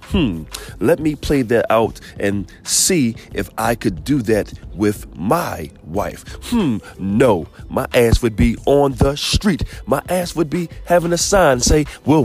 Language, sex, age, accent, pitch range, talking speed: English, male, 40-59, American, 115-165 Hz, 165 wpm